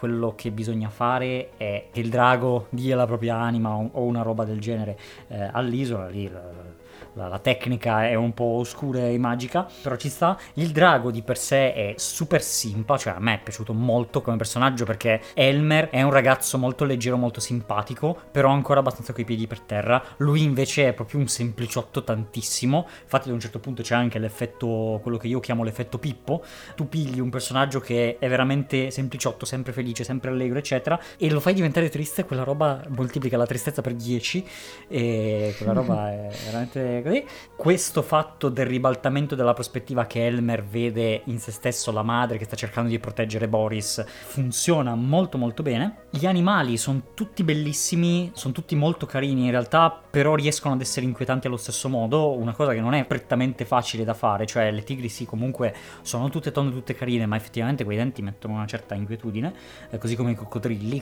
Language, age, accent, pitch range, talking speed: Italian, 20-39, native, 115-135 Hz, 185 wpm